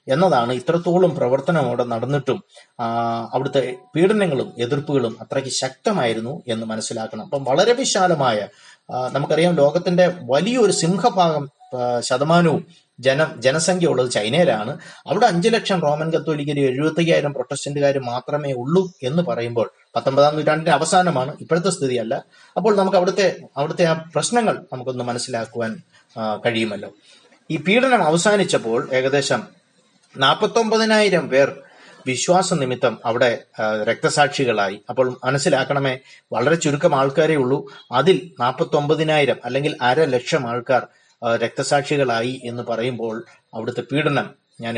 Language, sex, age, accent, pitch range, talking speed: Malayalam, male, 30-49, native, 125-175 Hz, 95 wpm